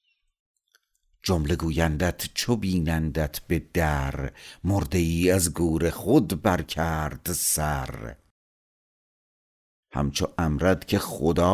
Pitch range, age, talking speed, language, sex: 75-90 Hz, 60-79, 90 wpm, Persian, male